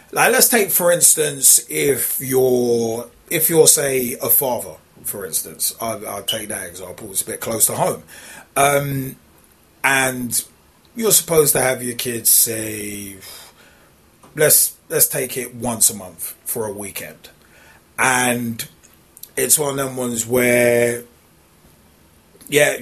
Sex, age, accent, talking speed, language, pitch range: male, 30-49, British, 135 wpm, English, 110-130 Hz